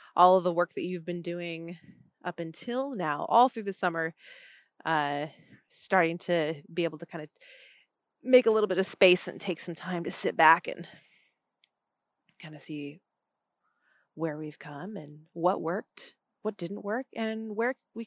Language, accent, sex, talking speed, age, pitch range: English, American, female, 175 wpm, 30-49, 165-215 Hz